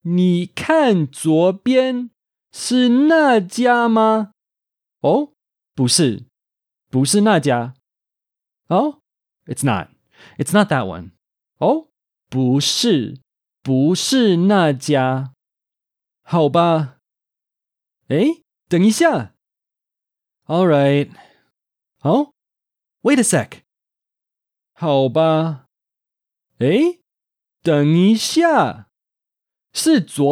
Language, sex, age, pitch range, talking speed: English, male, 20-39, 150-250 Hz, 40 wpm